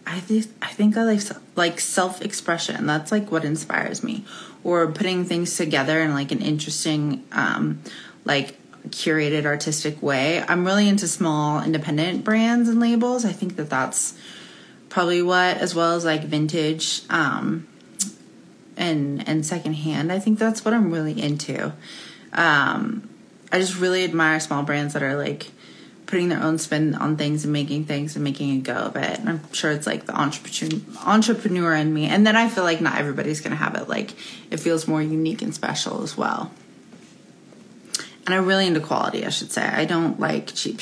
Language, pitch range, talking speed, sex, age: English, 155-205 Hz, 180 wpm, female, 20-39